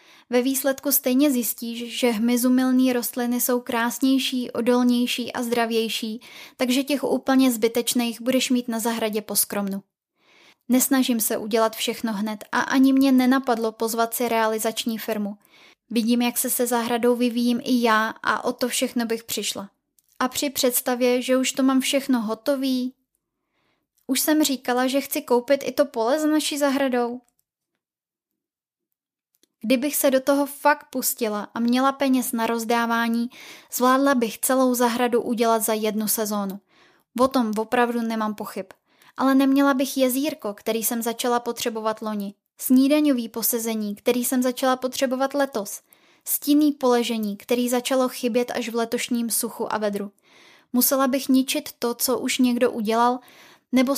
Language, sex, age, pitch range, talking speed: Czech, female, 10-29, 230-265 Hz, 145 wpm